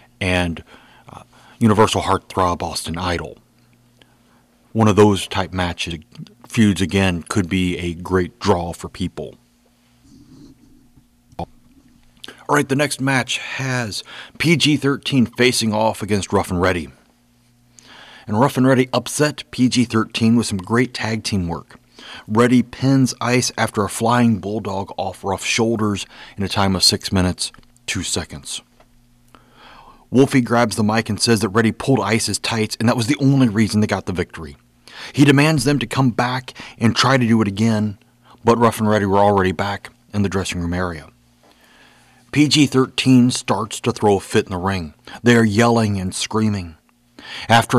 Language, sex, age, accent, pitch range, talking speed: English, male, 40-59, American, 95-120 Hz, 155 wpm